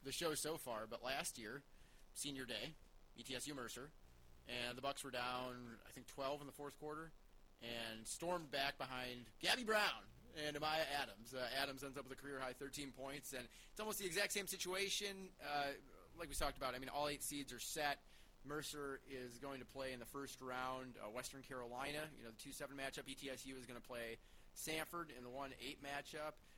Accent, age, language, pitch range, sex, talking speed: American, 30-49, English, 115-145 Hz, male, 205 wpm